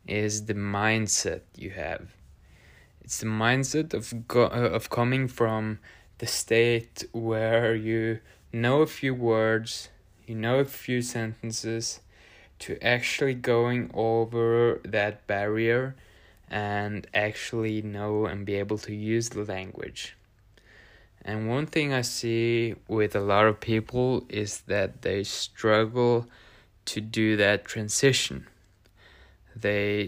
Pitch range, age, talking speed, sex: 105-115 Hz, 20-39, 120 wpm, male